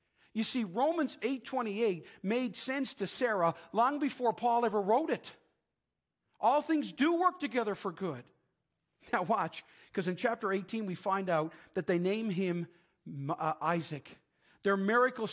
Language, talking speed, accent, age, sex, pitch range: English, 150 wpm, American, 40-59, male, 180-225 Hz